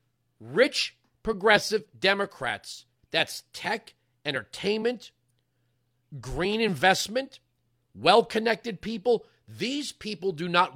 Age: 40-59